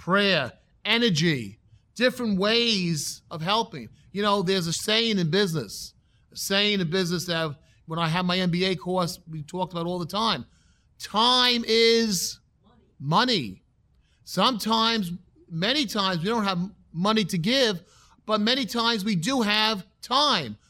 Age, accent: 40-59, American